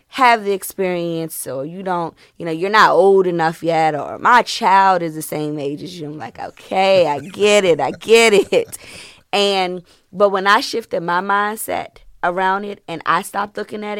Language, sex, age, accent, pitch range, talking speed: English, female, 20-39, American, 160-195 Hz, 195 wpm